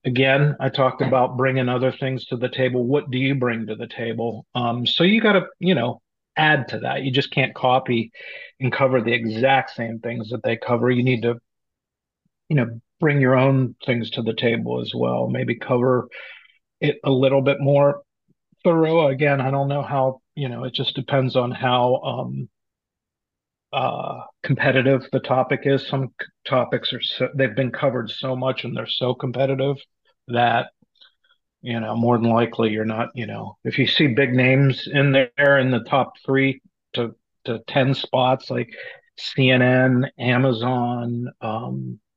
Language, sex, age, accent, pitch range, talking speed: English, male, 40-59, American, 120-135 Hz, 170 wpm